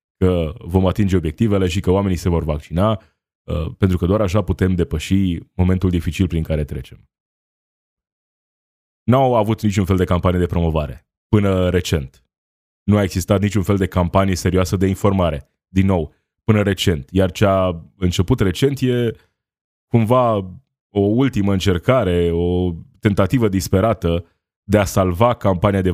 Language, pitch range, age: Romanian, 85-105 Hz, 20-39